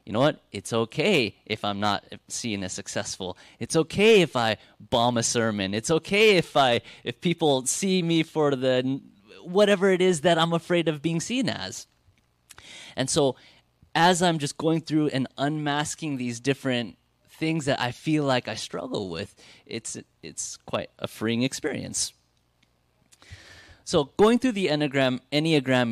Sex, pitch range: male, 105-150 Hz